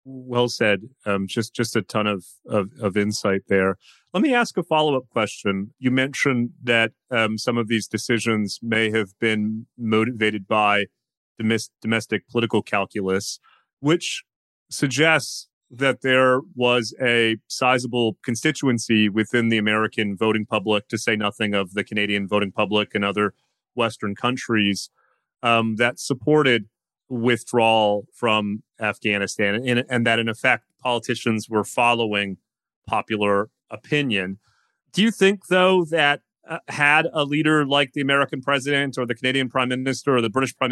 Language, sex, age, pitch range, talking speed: English, male, 30-49, 110-130 Hz, 145 wpm